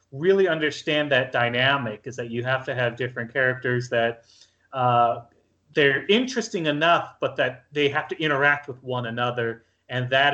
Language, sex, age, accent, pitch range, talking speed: English, male, 30-49, American, 120-150 Hz, 165 wpm